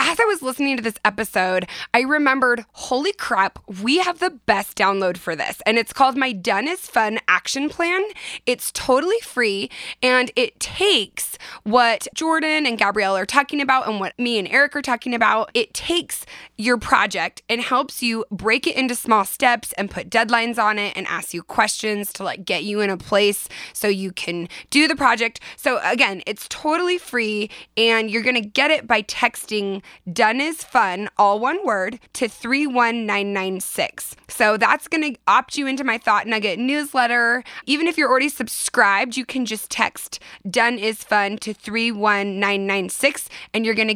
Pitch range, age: 205-270 Hz, 20-39